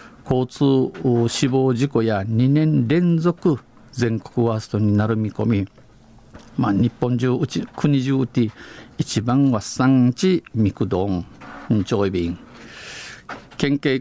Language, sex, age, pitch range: Japanese, male, 50-69, 110-140 Hz